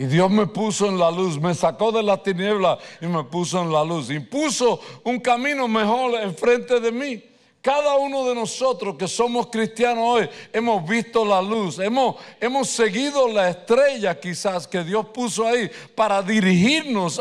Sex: male